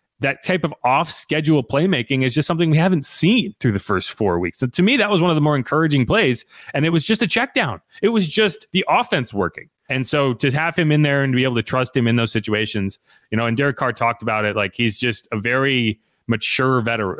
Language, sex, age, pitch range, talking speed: English, male, 30-49, 105-135 Hz, 255 wpm